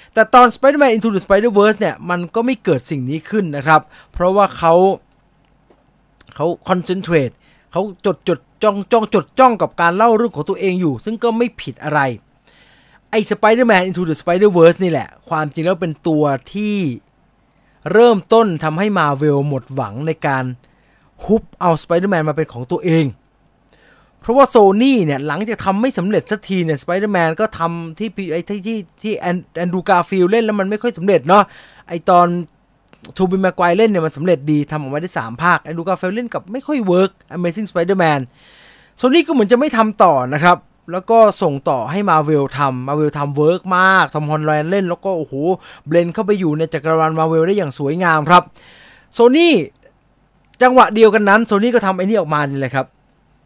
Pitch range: 155-210 Hz